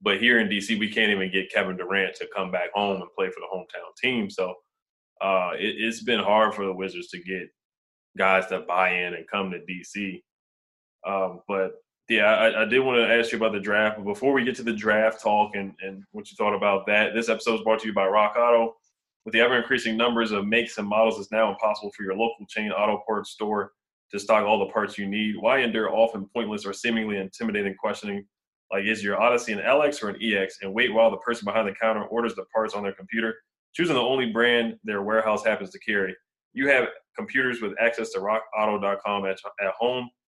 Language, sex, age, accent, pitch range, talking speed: English, male, 20-39, American, 100-115 Hz, 225 wpm